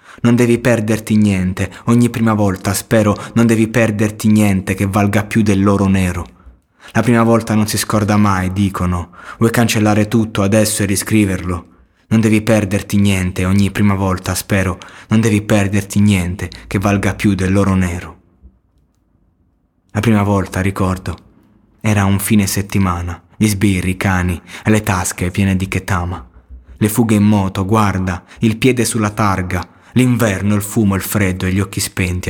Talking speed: 160 wpm